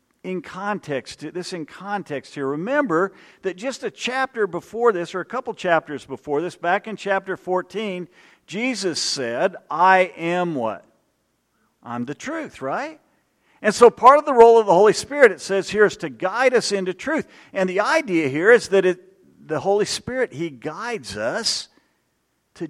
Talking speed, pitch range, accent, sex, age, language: 170 wpm, 175-230 Hz, American, male, 50-69, English